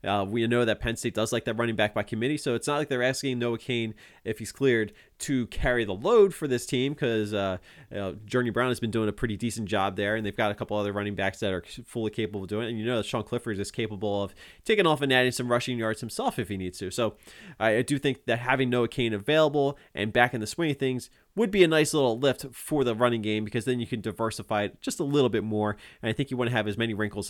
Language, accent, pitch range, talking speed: English, American, 105-130 Hz, 280 wpm